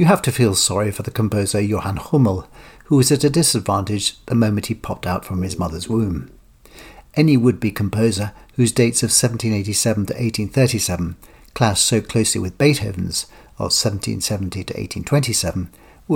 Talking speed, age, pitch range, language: 160 wpm, 60-79, 95-125 Hz, English